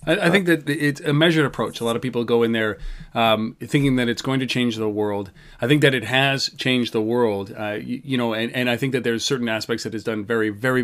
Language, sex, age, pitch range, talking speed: English, male, 30-49, 110-140 Hz, 270 wpm